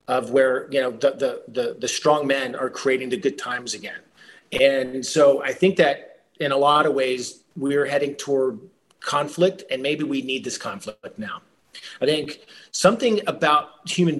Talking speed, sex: 180 wpm, male